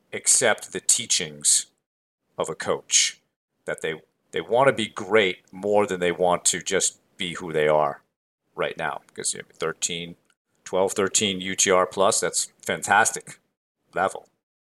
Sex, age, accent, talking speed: male, 40-59, American, 145 wpm